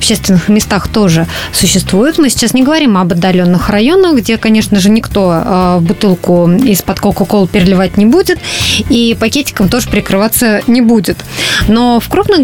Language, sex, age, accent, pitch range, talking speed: Russian, female, 20-39, native, 205-250 Hz, 150 wpm